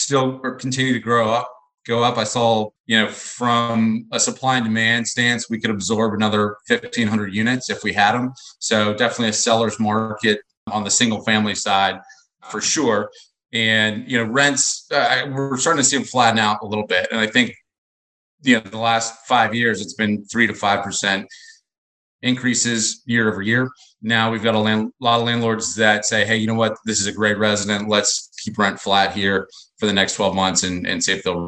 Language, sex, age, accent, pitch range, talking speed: English, male, 30-49, American, 100-120 Hz, 200 wpm